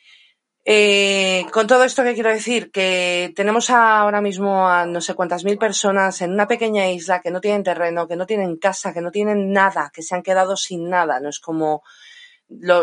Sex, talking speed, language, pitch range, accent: female, 200 wpm, Spanish, 170-210 Hz, Spanish